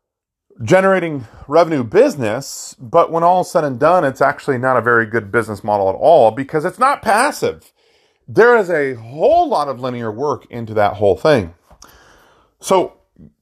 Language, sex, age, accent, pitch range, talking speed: English, male, 40-59, American, 120-175 Hz, 165 wpm